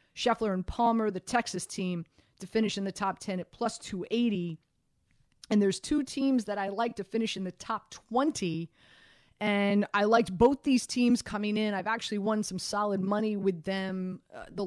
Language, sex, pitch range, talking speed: English, female, 185-215 Hz, 190 wpm